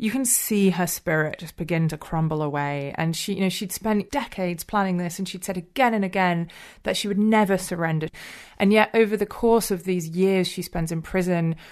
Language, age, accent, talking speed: English, 30-49, British, 215 wpm